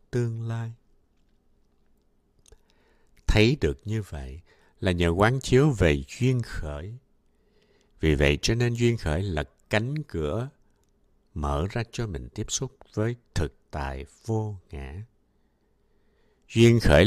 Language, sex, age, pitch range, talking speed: Vietnamese, male, 60-79, 80-115 Hz, 125 wpm